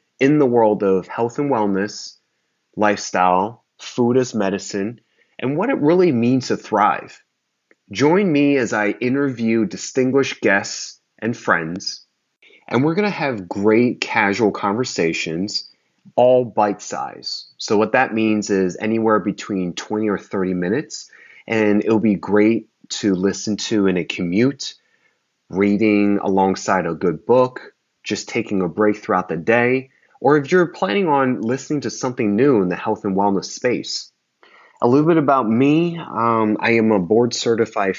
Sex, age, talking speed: male, 30-49, 150 wpm